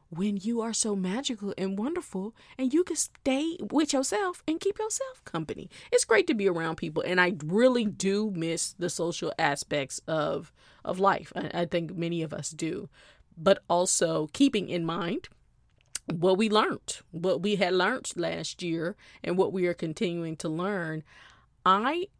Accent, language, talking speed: American, English, 170 wpm